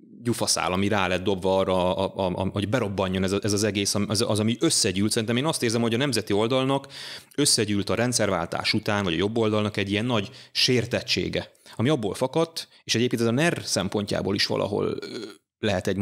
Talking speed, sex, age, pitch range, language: 195 wpm, male, 30-49, 100-130 Hz, Hungarian